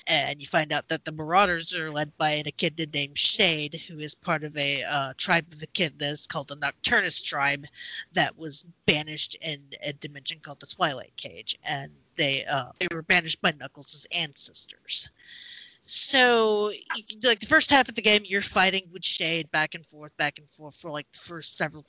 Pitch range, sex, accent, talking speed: 150-185 Hz, female, American, 195 wpm